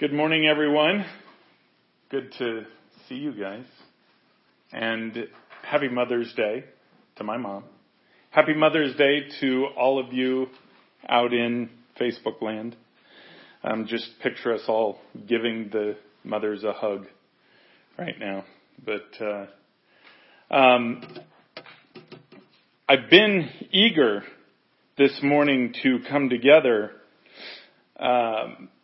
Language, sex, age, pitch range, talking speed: English, male, 40-59, 120-150 Hz, 105 wpm